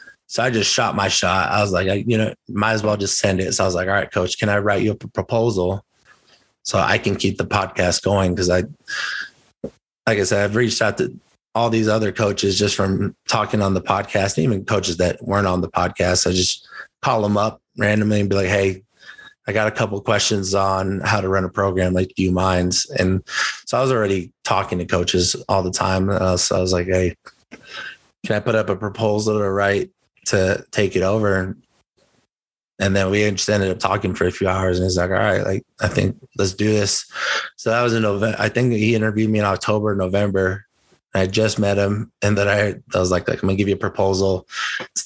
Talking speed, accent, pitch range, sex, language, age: 230 wpm, American, 95-105 Hz, male, English, 20-39